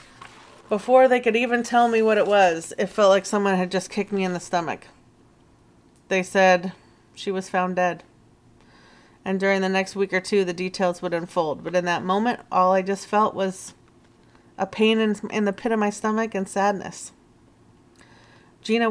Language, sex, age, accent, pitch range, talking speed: English, female, 30-49, American, 185-215 Hz, 185 wpm